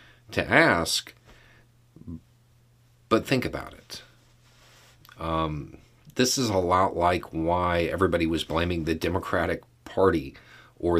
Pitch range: 85-120 Hz